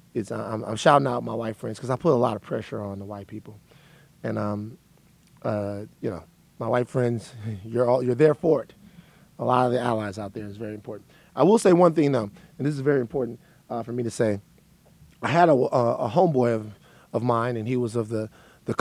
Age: 30-49